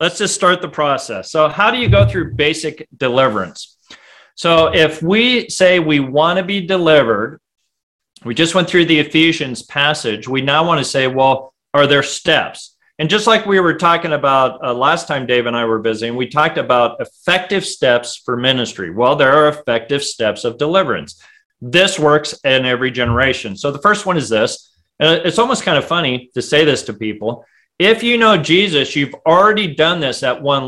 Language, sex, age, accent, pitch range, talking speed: English, male, 40-59, American, 125-170 Hz, 195 wpm